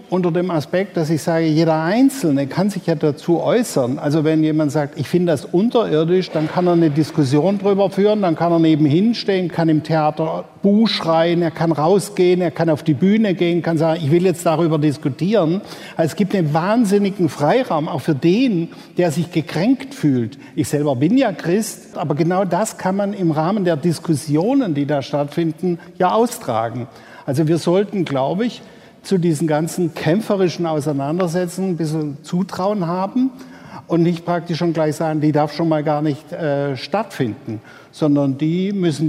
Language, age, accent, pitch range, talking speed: German, 60-79, German, 155-185 Hz, 180 wpm